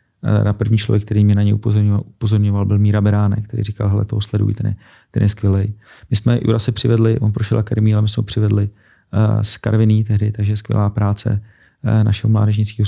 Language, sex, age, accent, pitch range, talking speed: Czech, male, 30-49, native, 105-110 Hz, 205 wpm